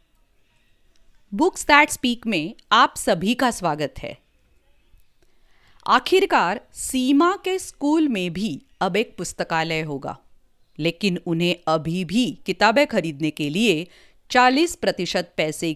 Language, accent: English, Indian